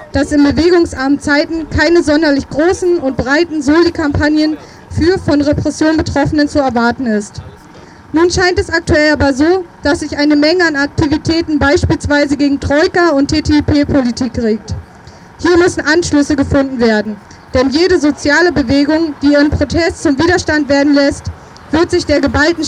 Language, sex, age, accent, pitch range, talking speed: German, female, 20-39, German, 280-320 Hz, 145 wpm